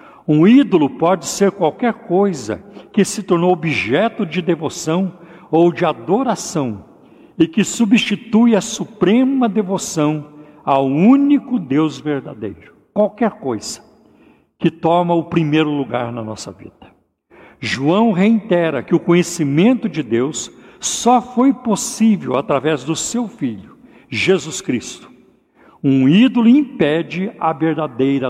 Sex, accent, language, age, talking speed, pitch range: male, Brazilian, Portuguese, 60-79, 120 wpm, 140-195 Hz